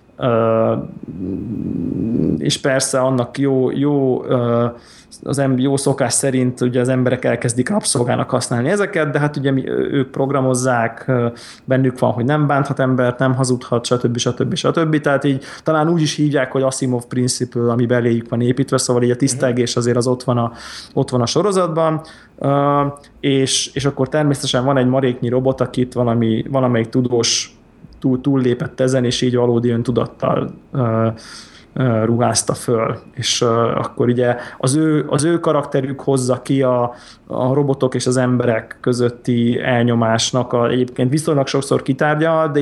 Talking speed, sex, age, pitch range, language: 155 wpm, male, 20-39, 120-140 Hz, Hungarian